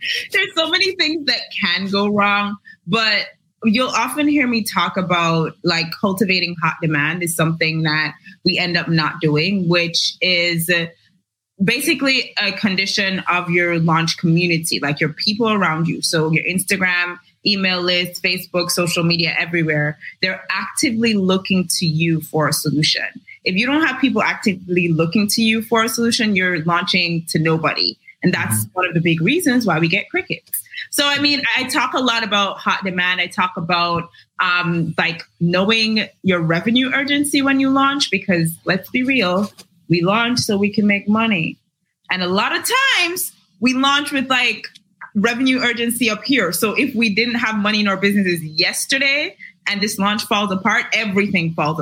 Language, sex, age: English, female, 20-39